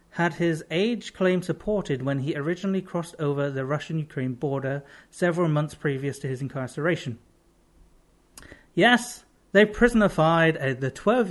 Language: English